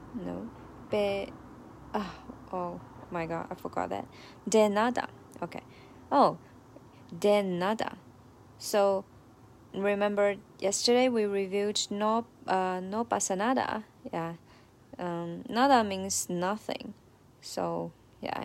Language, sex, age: Chinese, female, 20-39